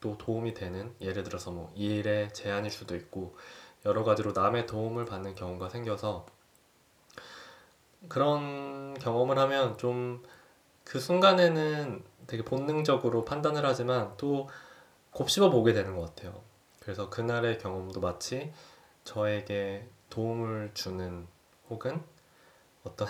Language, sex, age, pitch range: Korean, male, 20-39, 100-140 Hz